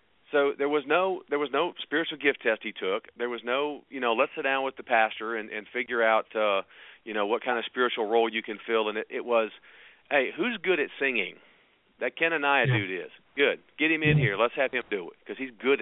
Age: 40-59